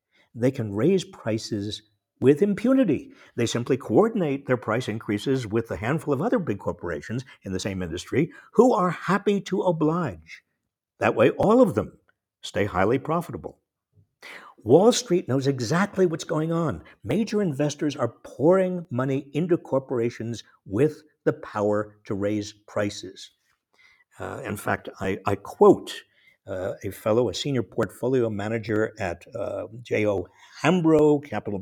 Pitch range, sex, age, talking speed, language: 110-165 Hz, male, 60-79, 140 wpm, English